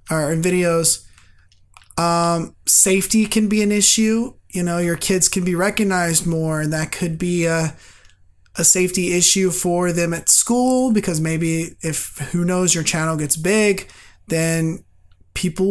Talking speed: 155 wpm